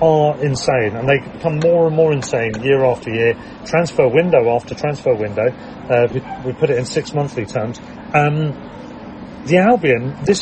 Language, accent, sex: English, British, male